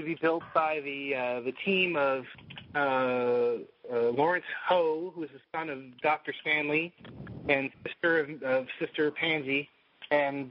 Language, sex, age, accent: English, male, 30-49, American